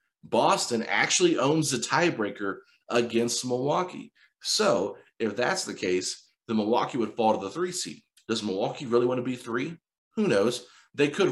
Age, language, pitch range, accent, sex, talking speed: 30-49, English, 110-145 Hz, American, male, 165 wpm